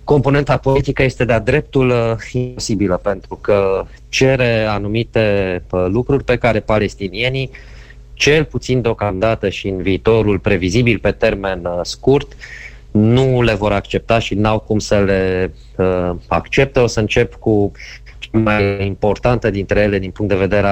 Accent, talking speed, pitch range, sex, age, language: native, 135 wpm, 95-120 Hz, male, 20-39, Romanian